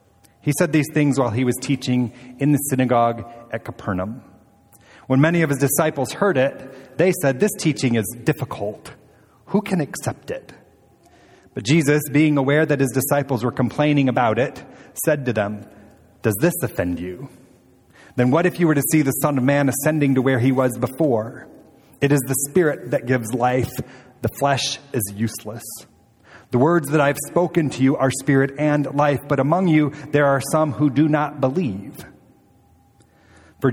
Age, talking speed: 30-49, 175 wpm